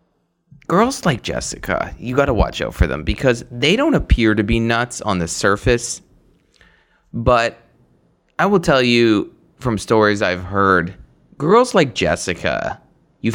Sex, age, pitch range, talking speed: male, 30-49, 90-135 Hz, 150 wpm